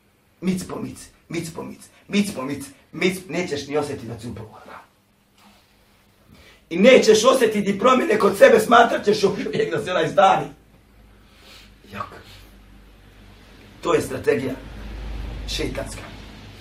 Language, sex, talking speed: English, male, 100 wpm